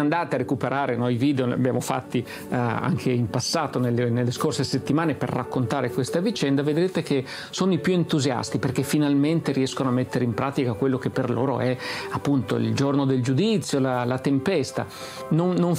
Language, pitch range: Italian, 130-165 Hz